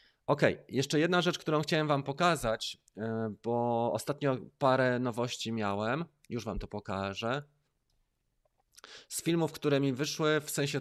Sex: male